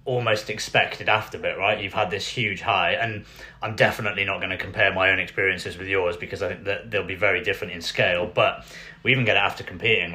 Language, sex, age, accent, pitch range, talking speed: English, male, 30-49, British, 100-125 Hz, 230 wpm